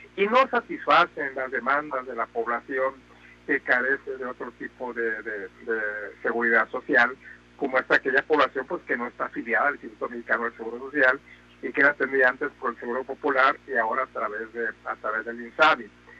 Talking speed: 190 wpm